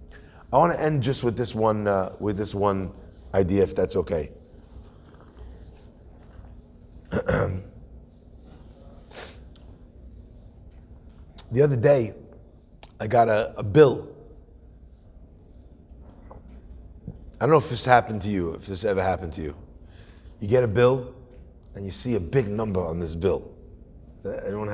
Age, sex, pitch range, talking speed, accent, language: 30-49, male, 85-130 Hz, 130 wpm, American, English